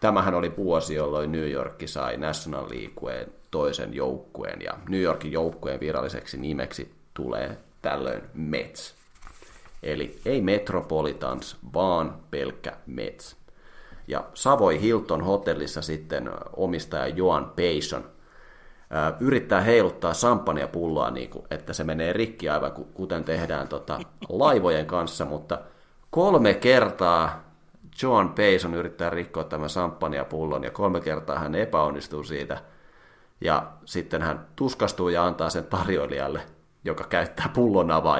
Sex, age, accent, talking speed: male, 30-49, native, 120 wpm